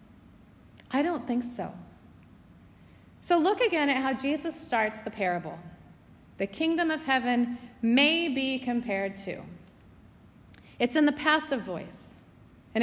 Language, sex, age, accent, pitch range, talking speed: English, female, 30-49, American, 190-285 Hz, 125 wpm